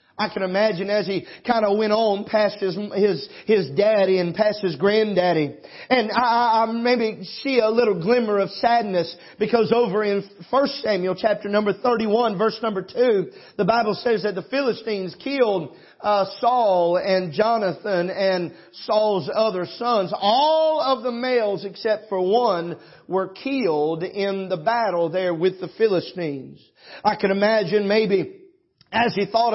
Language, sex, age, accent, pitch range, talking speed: English, male, 40-59, American, 195-235 Hz, 155 wpm